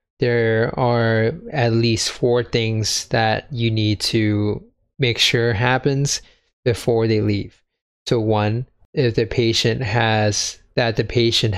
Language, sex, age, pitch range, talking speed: English, male, 20-39, 110-120 Hz, 130 wpm